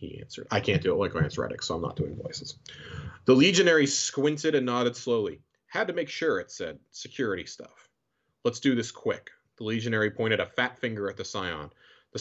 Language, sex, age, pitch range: English, male, 30-49, 110-140 Hz